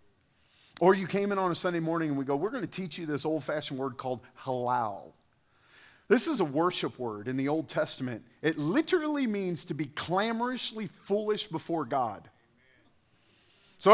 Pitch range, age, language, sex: 130-175 Hz, 40-59, English, male